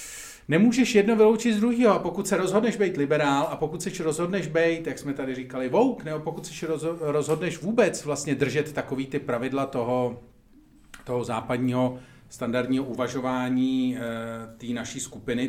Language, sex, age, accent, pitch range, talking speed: Czech, male, 40-59, native, 120-150 Hz, 155 wpm